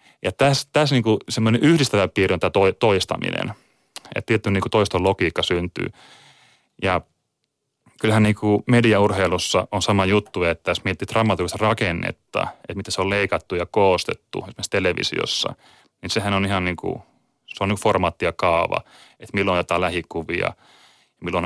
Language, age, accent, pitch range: Finnish, 30-49, native, 90-110 Hz